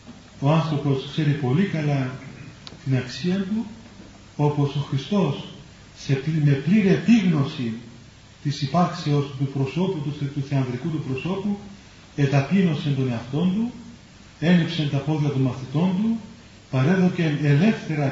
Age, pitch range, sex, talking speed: 40-59, 130-160 Hz, male, 115 wpm